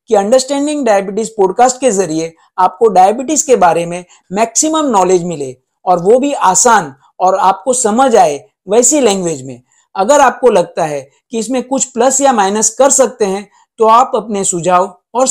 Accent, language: native, Hindi